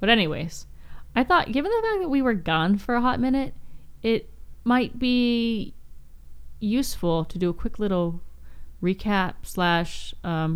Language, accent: English, American